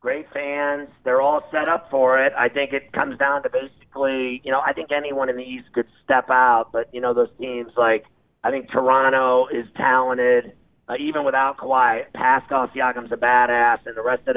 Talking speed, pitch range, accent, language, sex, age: 205 wpm, 120-130 Hz, American, English, male, 40-59